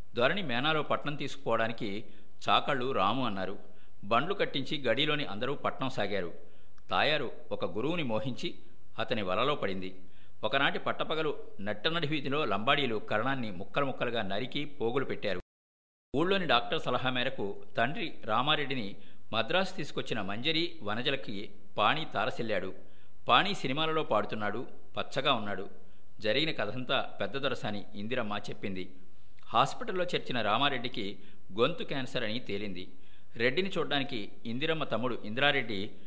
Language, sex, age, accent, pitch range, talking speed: Telugu, male, 50-69, native, 100-145 Hz, 105 wpm